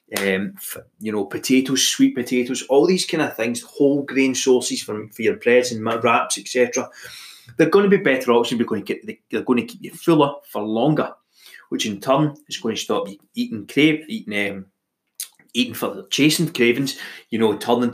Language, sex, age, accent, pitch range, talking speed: English, male, 20-39, British, 115-140 Hz, 195 wpm